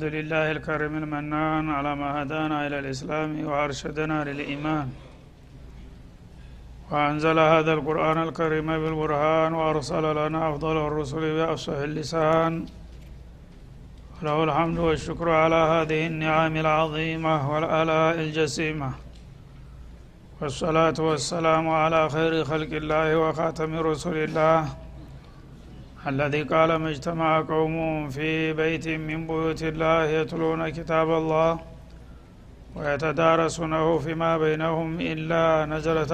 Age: 60-79